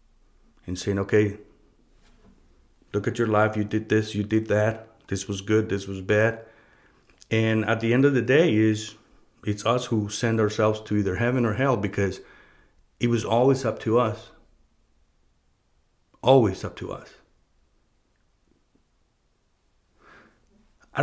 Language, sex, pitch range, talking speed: English, male, 95-115 Hz, 140 wpm